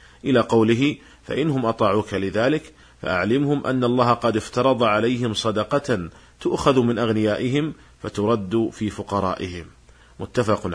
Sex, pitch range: male, 100-125 Hz